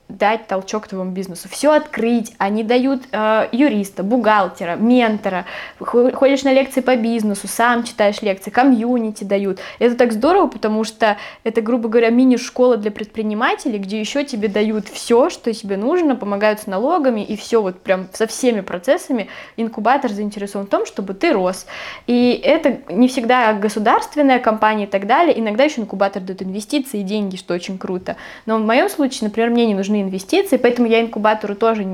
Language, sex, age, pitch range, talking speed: Russian, female, 20-39, 200-250 Hz, 170 wpm